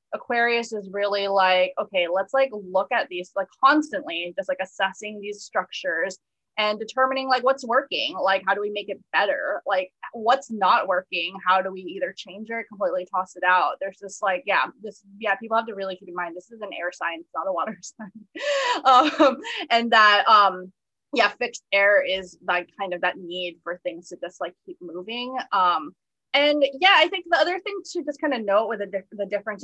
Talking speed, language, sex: 210 wpm, English, female